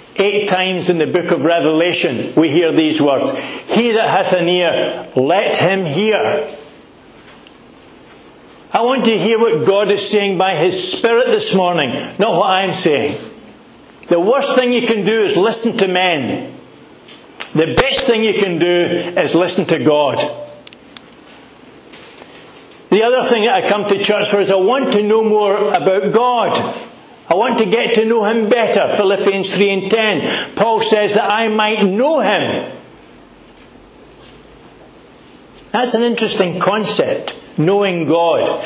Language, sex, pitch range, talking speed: English, male, 175-220 Hz, 155 wpm